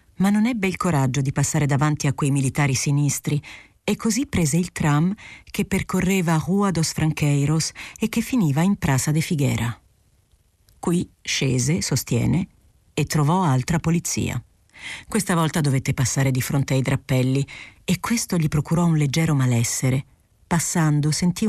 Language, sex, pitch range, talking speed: Italian, female, 130-175 Hz, 150 wpm